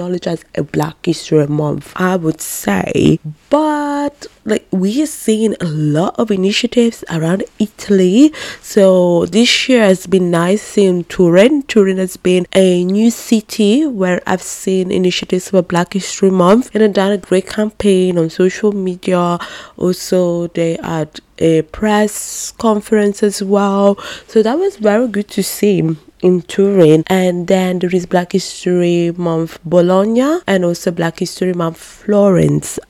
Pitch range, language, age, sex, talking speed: 165-205 Hz, English, 20-39, female, 150 wpm